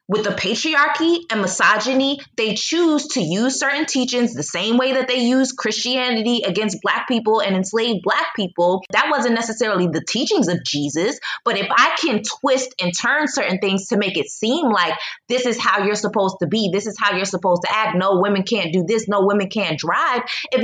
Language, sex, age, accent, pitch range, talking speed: English, female, 20-39, American, 195-250 Hz, 205 wpm